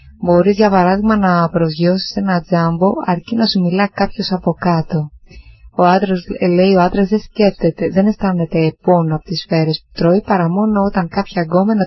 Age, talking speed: 20-39, 170 wpm